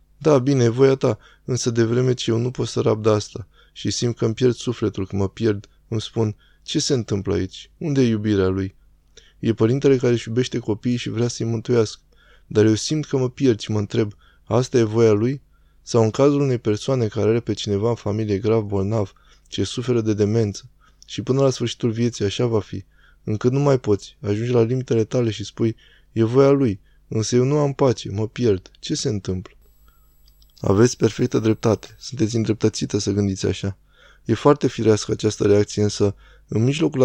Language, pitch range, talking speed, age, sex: Romanian, 100-125 Hz, 195 wpm, 20-39, male